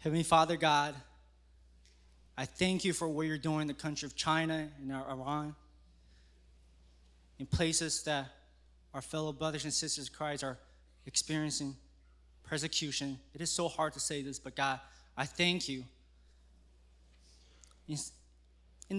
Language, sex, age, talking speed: English, male, 20-39, 135 wpm